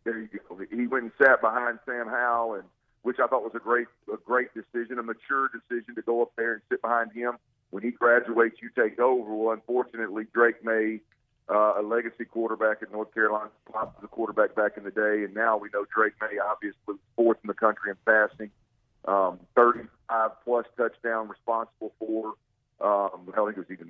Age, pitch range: 50-69, 105-120 Hz